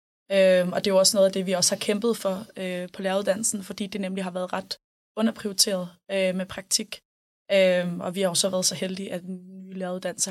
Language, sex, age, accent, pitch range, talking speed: Danish, female, 20-39, native, 185-205 Hz, 220 wpm